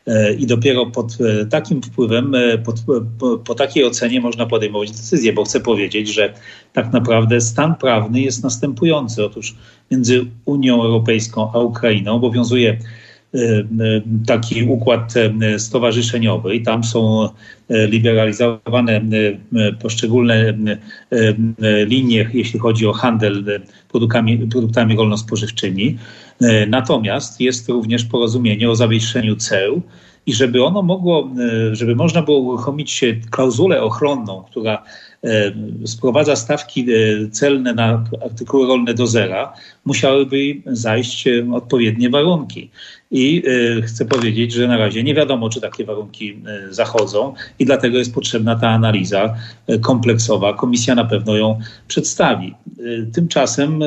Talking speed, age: 110 wpm, 40-59